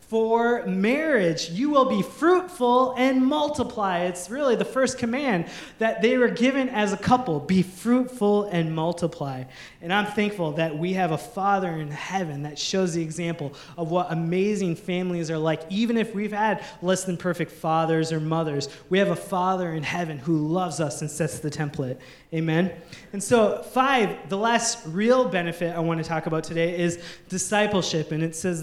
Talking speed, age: 180 wpm, 20-39